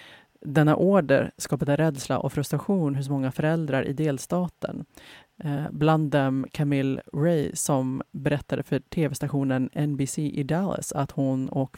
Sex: female